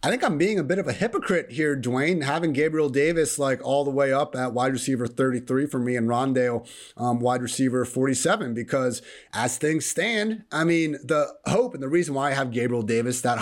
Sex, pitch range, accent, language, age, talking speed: male, 115-145 Hz, American, English, 30-49, 215 wpm